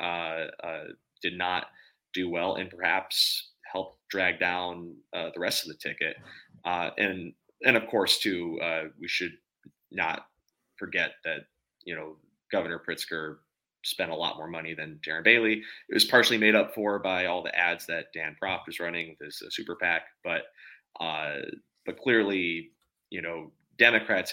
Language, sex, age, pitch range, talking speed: English, male, 30-49, 85-95 Hz, 165 wpm